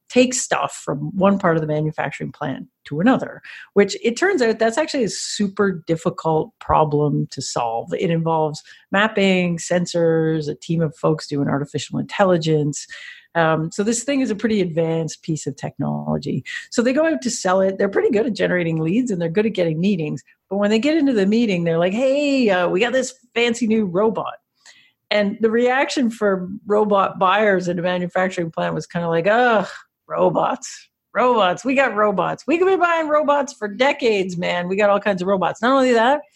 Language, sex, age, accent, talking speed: English, female, 50-69, American, 195 wpm